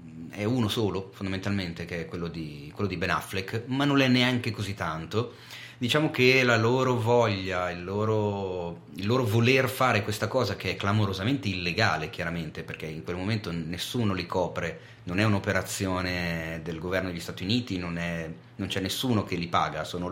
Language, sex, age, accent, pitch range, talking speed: Italian, male, 30-49, native, 85-120 Hz, 180 wpm